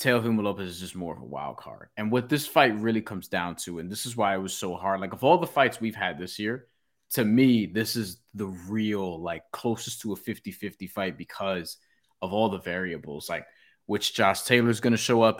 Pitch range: 95-120 Hz